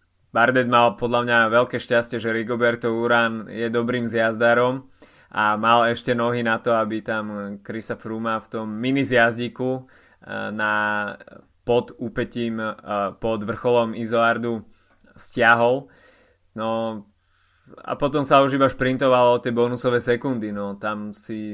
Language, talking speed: Slovak, 130 wpm